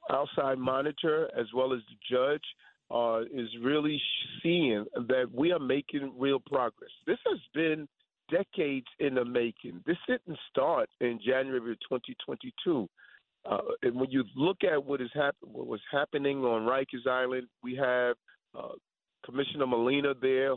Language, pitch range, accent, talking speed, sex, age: English, 130-185 Hz, American, 150 wpm, male, 40-59